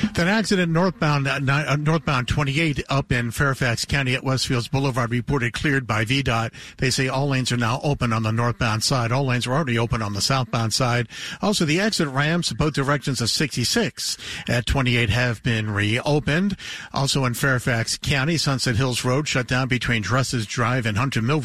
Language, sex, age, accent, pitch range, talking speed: English, male, 50-69, American, 115-140 Hz, 180 wpm